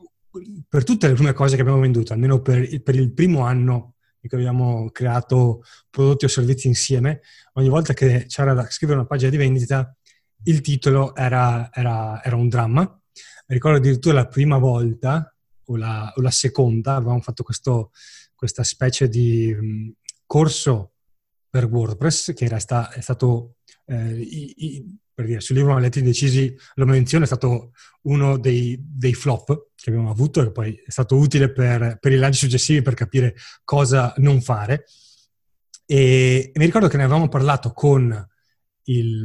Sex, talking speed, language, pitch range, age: male, 160 wpm, Italian, 120-140 Hz, 20-39